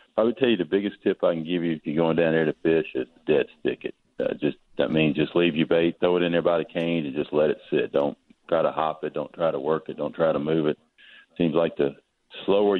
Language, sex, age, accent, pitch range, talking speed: English, male, 40-59, American, 75-85 Hz, 295 wpm